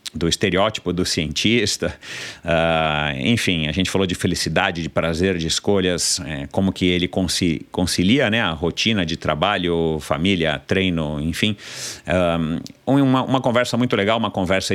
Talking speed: 145 wpm